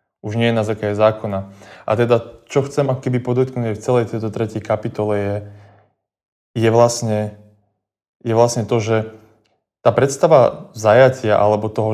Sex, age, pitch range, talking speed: male, 20-39, 105-120 Hz, 145 wpm